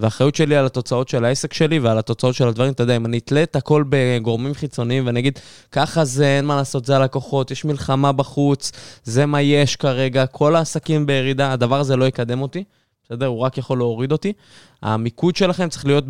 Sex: male